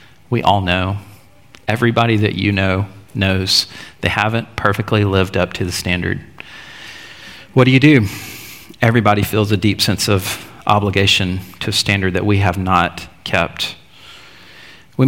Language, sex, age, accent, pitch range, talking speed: English, male, 40-59, American, 100-120 Hz, 145 wpm